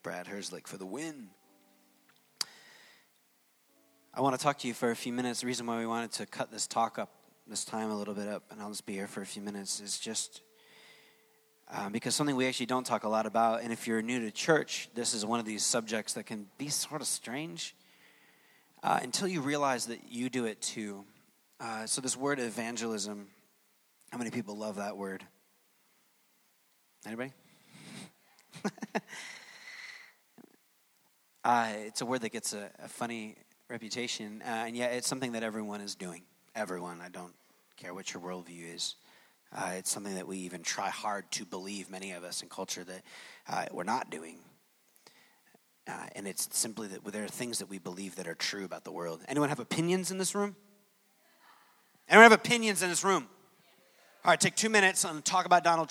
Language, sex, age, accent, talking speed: English, male, 20-39, American, 190 wpm